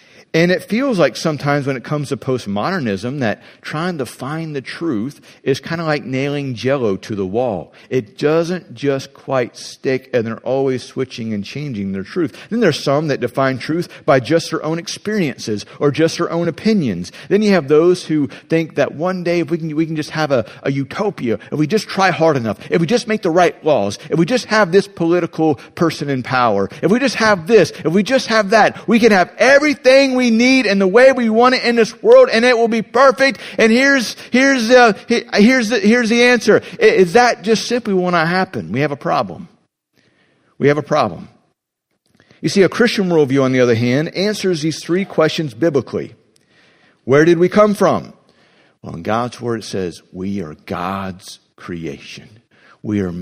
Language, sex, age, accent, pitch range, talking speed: English, male, 50-69, American, 130-210 Hz, 200 wpm